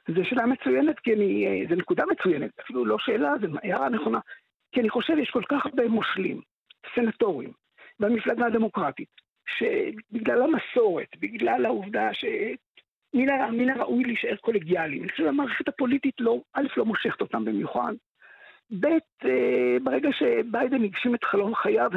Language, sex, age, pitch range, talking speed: Hebrew, male, 50-69, 220-280 Hz, 135 wpm